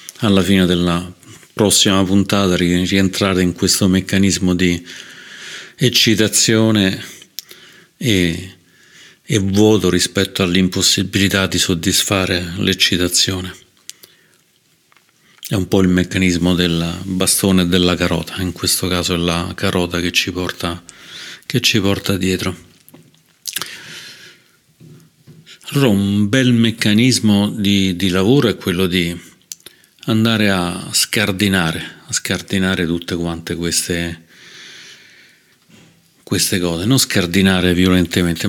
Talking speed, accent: 100 wpm, native